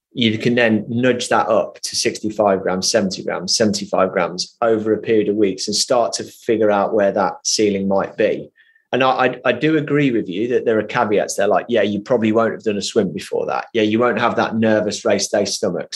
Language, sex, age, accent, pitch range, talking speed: English, male, 30-49, British, 105-120 Hz, 230 wpm